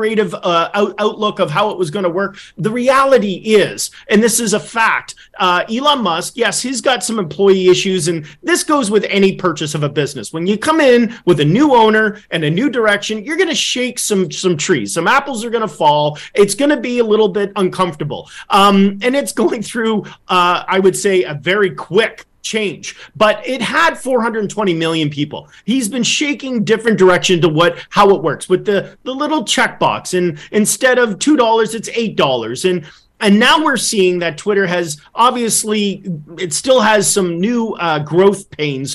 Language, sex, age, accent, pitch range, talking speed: English, male, 30-49, American, 180-235 Hz, 195 wpm